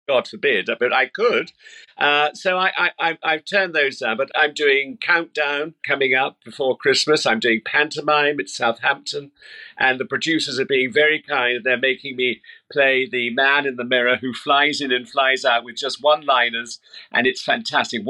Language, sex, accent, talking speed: English, male, British, 180 wpm